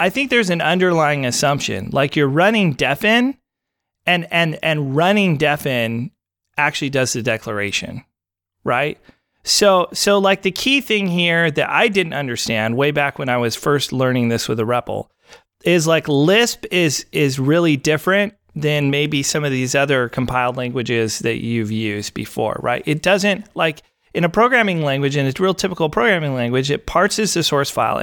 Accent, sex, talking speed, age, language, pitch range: American, male, 170 wpm, 30-49, English, 135-180 Hz